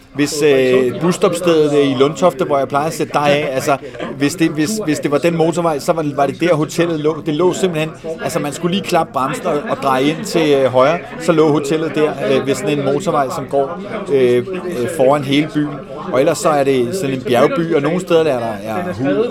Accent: native